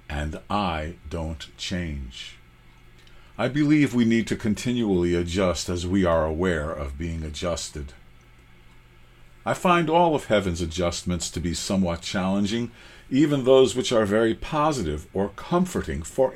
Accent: American